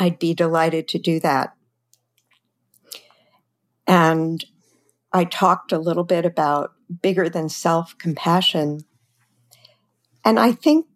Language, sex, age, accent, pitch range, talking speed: English, female, 50-69, American, 150-185 Hz, 105 wpm